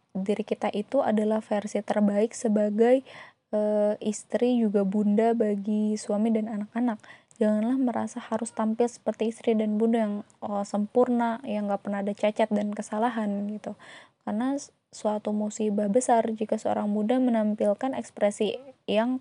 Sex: female